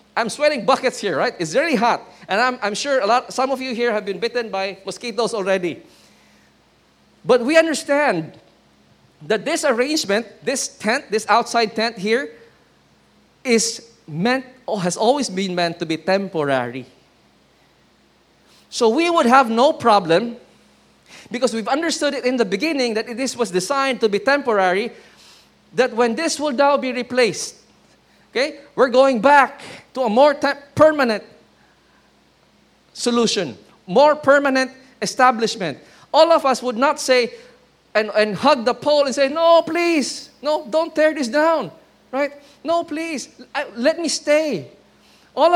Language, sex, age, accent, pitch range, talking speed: English, male, 20-39, Filipino, 220-295 Hz, 150 wpm